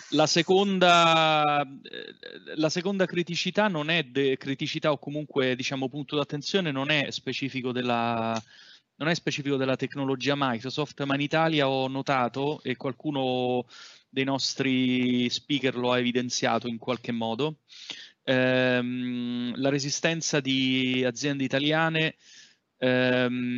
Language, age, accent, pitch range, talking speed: Italian, 30-49, native, 125-145 Hz, 115 wpm